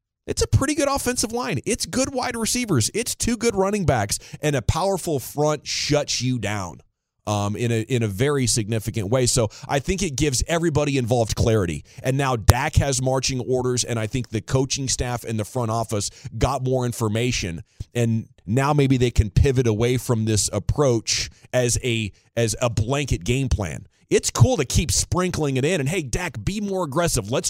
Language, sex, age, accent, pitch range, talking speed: English, male, 30-49, American, 110-140 Hz, 190 wpm